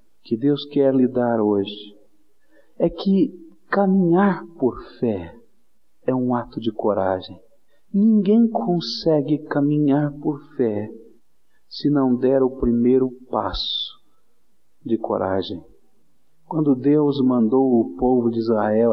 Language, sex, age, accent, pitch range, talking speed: English, male, 50-69, Brazilian, 110-150 Hz, 115 wpm